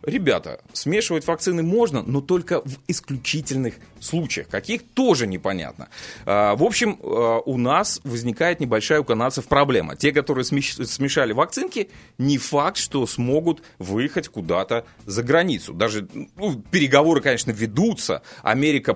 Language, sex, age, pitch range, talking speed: Russian, male, 30-49, 115-165 Hz, 125 wpm